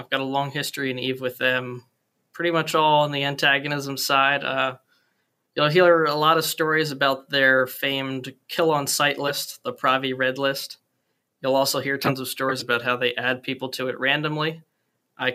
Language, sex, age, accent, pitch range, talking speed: English, male, 20-39, American, 130-155 Hz, 190 wpm